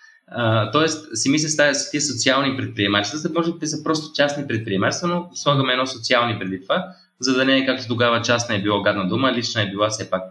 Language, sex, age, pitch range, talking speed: Bulgarian, male, 20-39, 105-140 Hz, 240 wpm